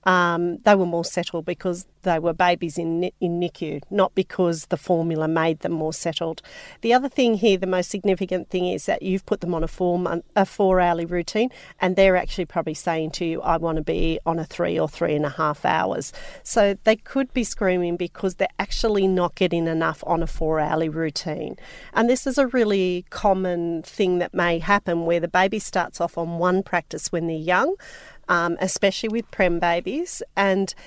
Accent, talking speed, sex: Australian, 195 wpm, female